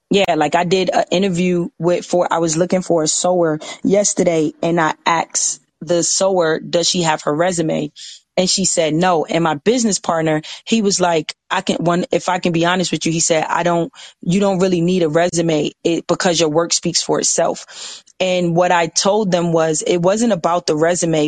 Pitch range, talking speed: 165-180 Hz, 210 wpm